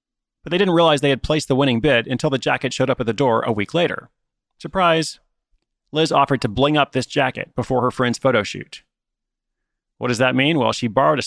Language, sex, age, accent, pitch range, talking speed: English, male, 30-49, American, 120-150 Hz, 225 wpm